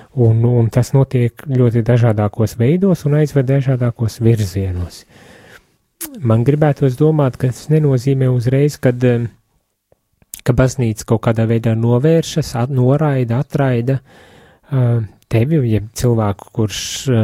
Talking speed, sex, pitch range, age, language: 110 wpm, male, 110-135 Hz, 30-49, English